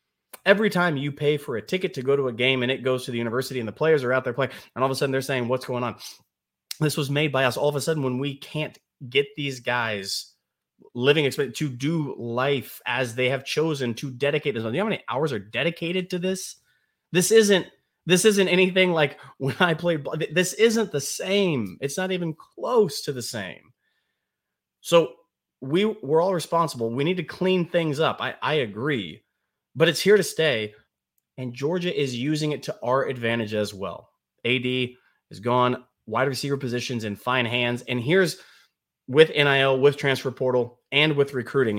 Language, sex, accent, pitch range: English, male, American, 120-160 Hz